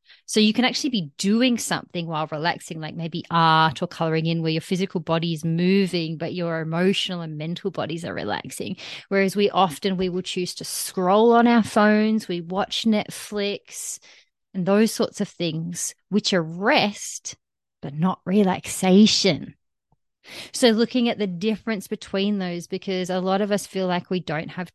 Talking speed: 170 wpm